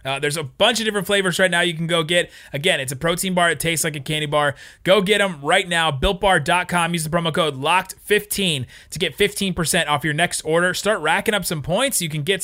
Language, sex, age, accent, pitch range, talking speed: English, male, 30-49, American, 145-195 Hz, 250 wpm